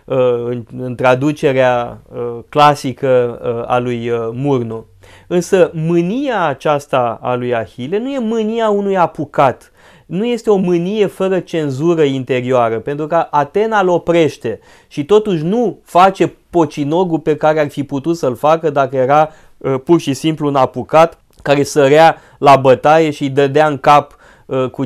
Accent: native